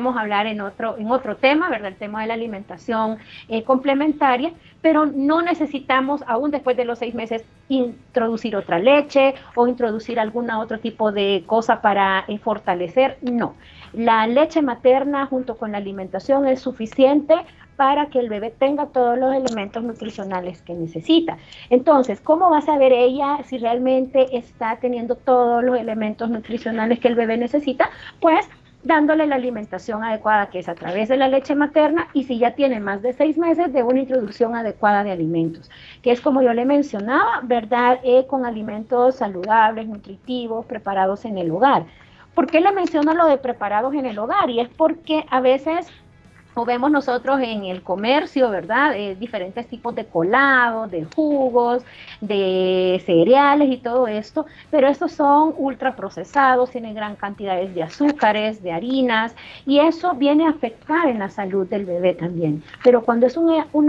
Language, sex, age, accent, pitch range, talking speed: Spanish, female, 40-59, American, 215-275 Hz, 170 wpm